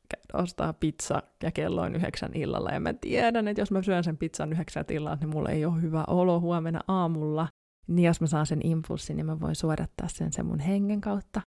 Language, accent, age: Finnish, native, 20-39